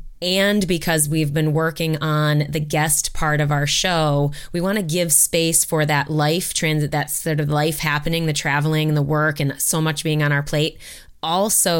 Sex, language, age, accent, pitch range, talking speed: female, English, 20-39, American, 150-165 Hz, 195 wpm